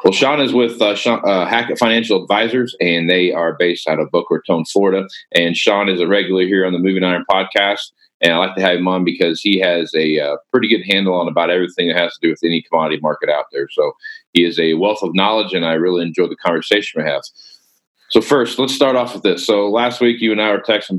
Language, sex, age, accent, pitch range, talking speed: English, male, 40-59, American, 85-100 Hz, 250 wpm